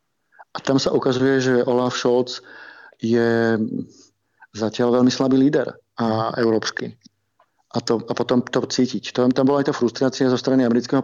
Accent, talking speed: native, 160 wpm